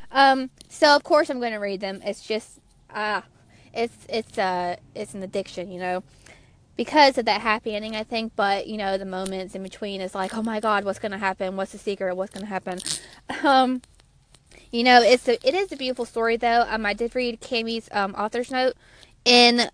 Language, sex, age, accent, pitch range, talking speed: English, female, 20-39, American, 195-240 Hz, 215 wpm